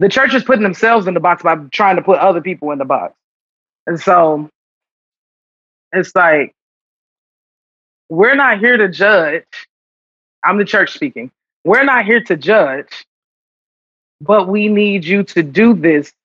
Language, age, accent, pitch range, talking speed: English, 20-39, American, 170-220 Hz, 155 wpm